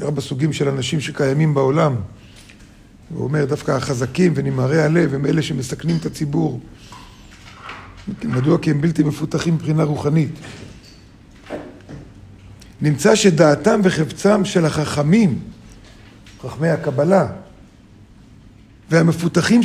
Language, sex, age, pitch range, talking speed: Hebrew, male, 50-69, 140-190 Hz, 100 wpm